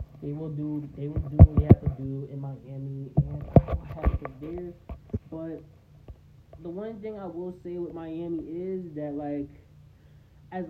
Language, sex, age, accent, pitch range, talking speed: English, male, 10-29, American, 135-165 Hz, 180 wpm